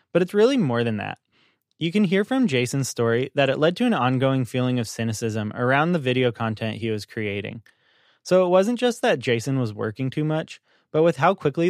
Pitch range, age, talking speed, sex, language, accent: 115-160 Hz, 20-39, 215 wpm, male, English, American